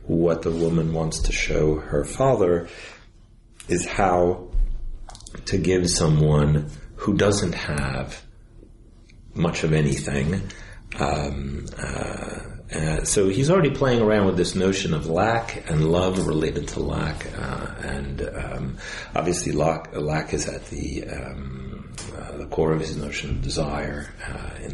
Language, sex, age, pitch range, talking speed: English, male, 40-59, 75-105 Hz, 135 wpm